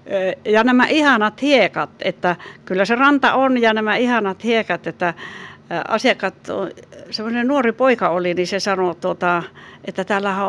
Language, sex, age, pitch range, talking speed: Finnish, female, 60-79, 180-225 Hz, 135 wpm